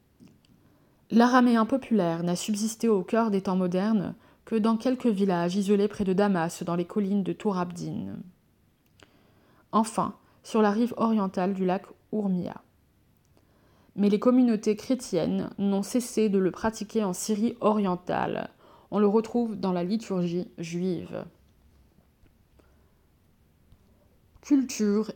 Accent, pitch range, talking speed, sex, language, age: French, 180-220 Hz, 120 wpm, female, French, 20-39